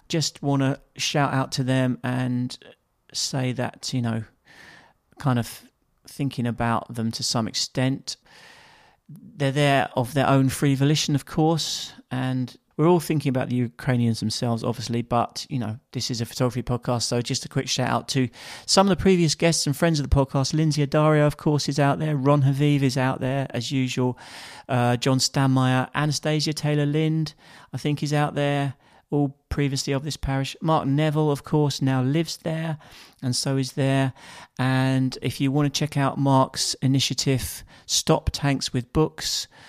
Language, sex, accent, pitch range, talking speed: English, male, British, 125-145 Hz, 175 wpm